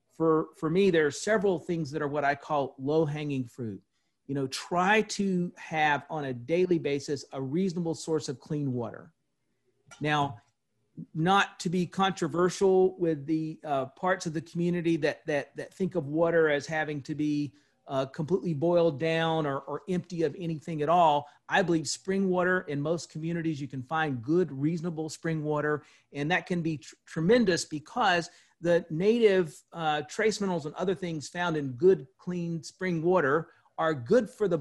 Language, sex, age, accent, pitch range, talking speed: English, male, 40-59, American, 150-180 Hz, 175 wpm